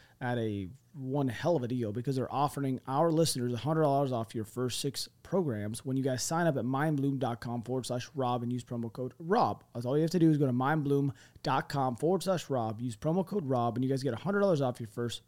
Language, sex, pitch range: English, male, 125-155 Hz